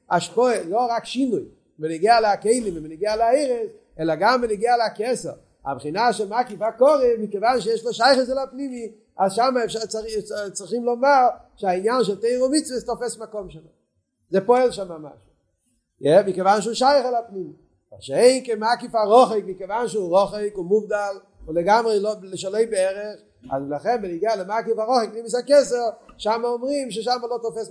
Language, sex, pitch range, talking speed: Hebrew, male, 195-245 Hz, 160 wpm